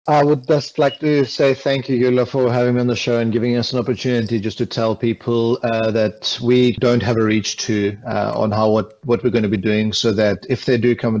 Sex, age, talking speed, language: male, 40-59, 255 wpm, English